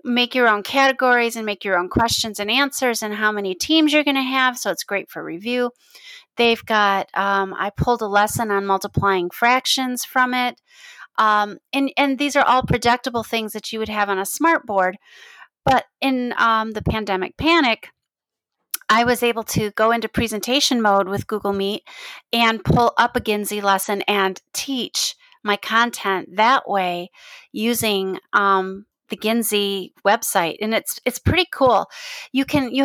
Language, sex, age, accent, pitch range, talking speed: English, female, 30-49, American, 200-255 Hz, 170 wpm